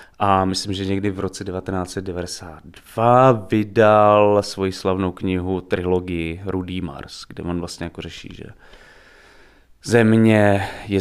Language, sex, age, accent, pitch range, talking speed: Czech, male, 20-39, native, 95-105 Hz, 120 wpm